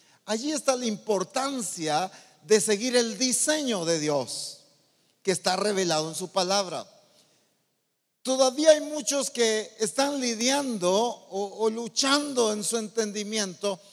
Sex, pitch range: male, 180-245 Hz